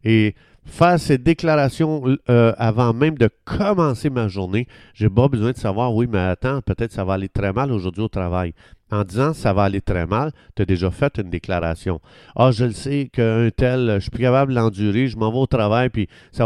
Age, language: 50-69, French